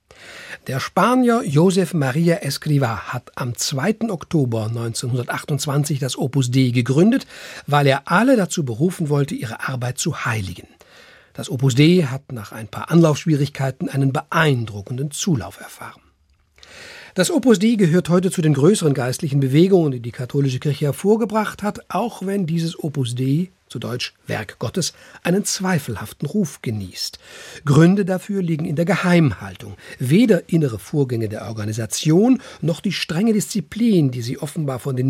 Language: German